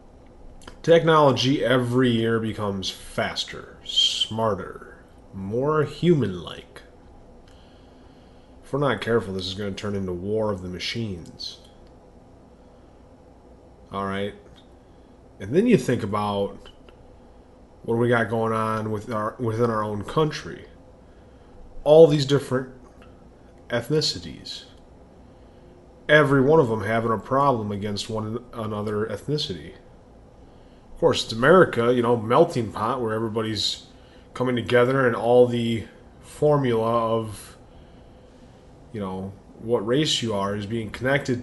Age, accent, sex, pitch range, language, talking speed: 30-49, American, male, 100-125 Hz, English, 115 wpm